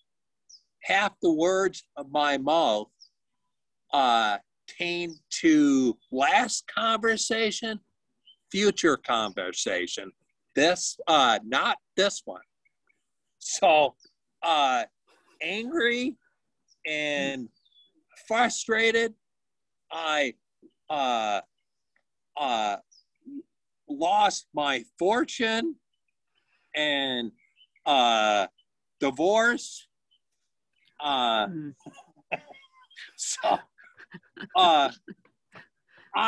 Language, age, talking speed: English, 50-69, 60 wpm